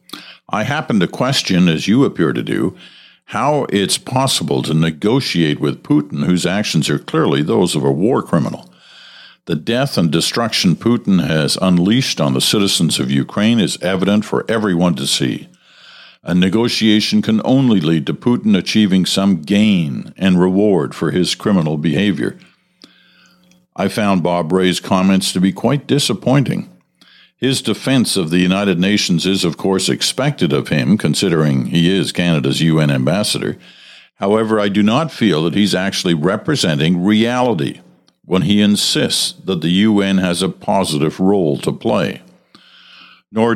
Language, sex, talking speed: English, male, 150 wpm